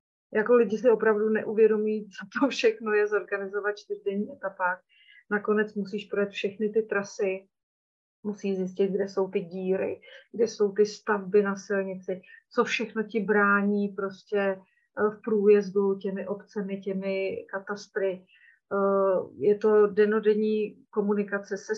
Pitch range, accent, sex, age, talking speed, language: 190-210 Hz, native, female, 30-49, 125 wpm, Czech